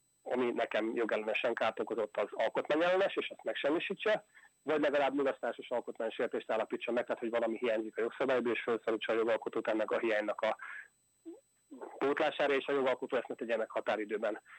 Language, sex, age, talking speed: Hungarian, male, 30-49, 150 wpm